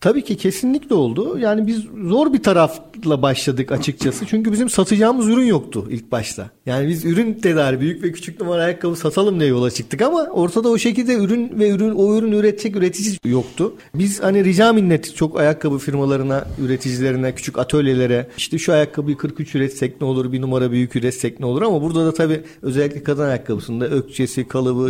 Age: 50-69